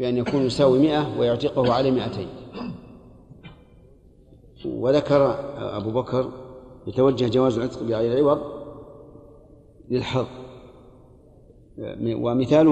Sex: male